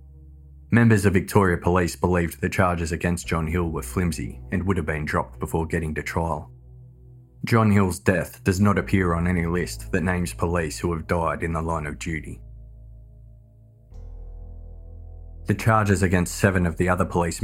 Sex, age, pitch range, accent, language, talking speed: male, 20-39, 80-95 Hz, Australian, English, 170 wpm